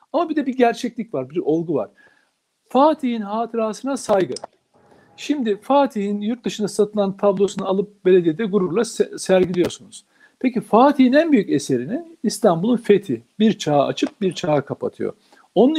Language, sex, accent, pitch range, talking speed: Turkish, male, native, 155-235 Hz, 140 wpm